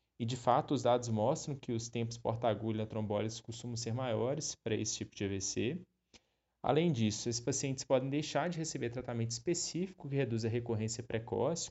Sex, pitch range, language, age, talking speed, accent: male, 115-160 Hz, Portuguese, 20-39, 180 wpm, Brazilian